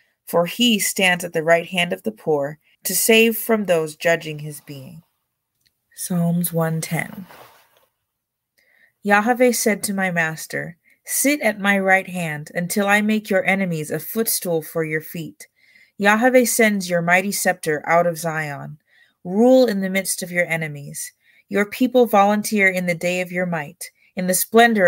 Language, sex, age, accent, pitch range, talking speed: English, female, 30-49, American, 165-210 Hz, 160 wpm